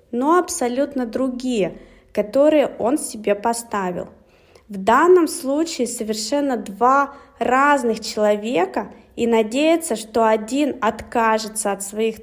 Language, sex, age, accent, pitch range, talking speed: Russian, female, 20-39, native, 210-270 Hz, 105 wpm